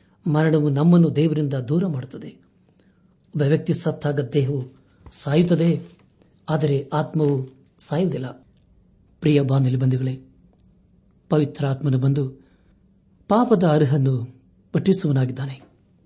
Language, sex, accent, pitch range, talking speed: Kannada, male, native, 135-165 Hz, 70 wpm